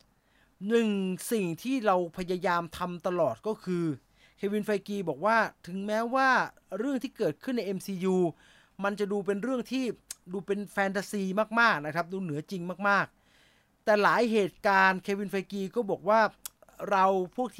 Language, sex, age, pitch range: English, male, 30-49, 165-210 Hz